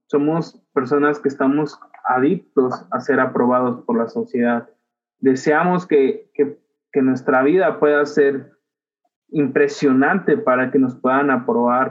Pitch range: 130-155 Hz